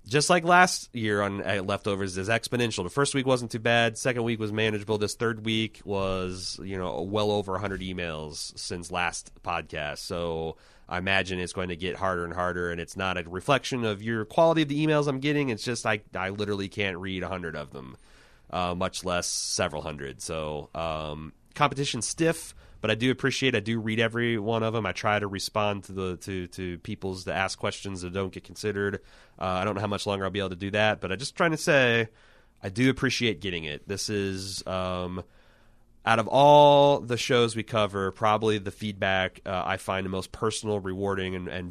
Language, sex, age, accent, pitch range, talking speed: English, male, 30-49, American, 90-110 Hz, 210 wpm